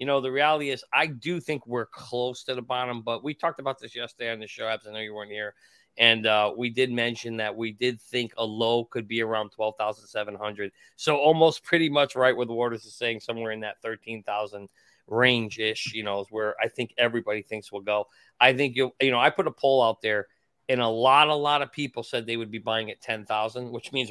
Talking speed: 235 wpm